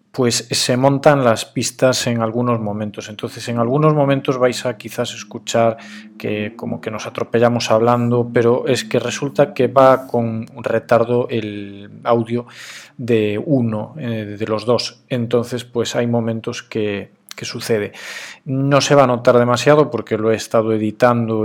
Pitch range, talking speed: 115-140 Hz, 155 wpm